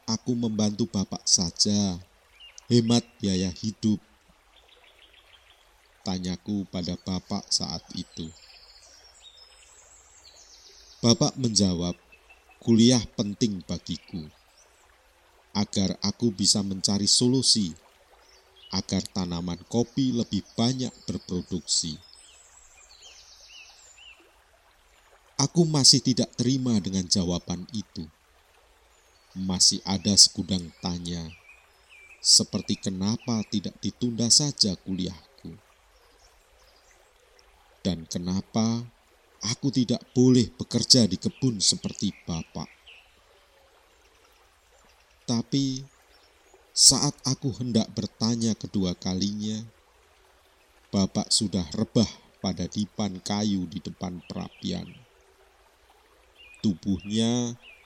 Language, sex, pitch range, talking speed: Indonesian, male, 95-120 Hz, 75 wpm